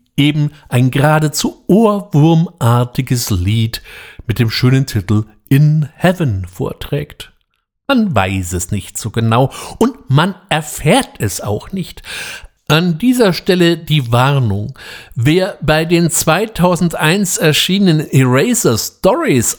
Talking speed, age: 105 wpm, 60-79